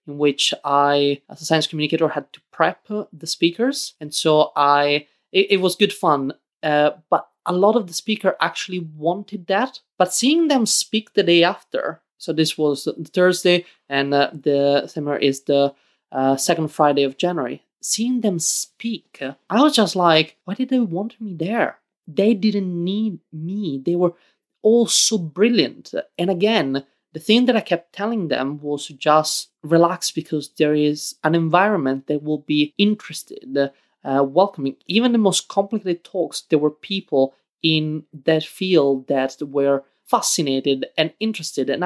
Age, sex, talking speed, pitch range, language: 20-39, male, 165 wpm, 150-200 Hz, English